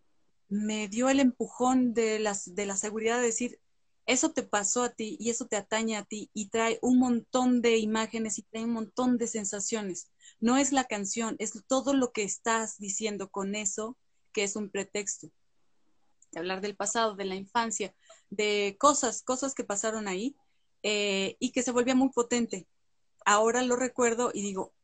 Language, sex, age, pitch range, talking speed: Spanish, female, 30-49, 205-250 Hz, 180 wpm